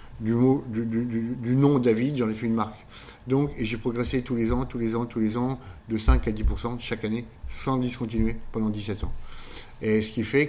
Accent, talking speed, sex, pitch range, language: French, 230 wpm, male, 100-115 Hz, French